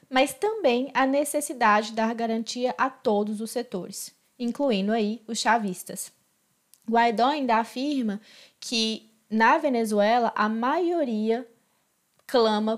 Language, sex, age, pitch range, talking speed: Portuguese, female, 20-39, 210-255 Hz, 115 wpm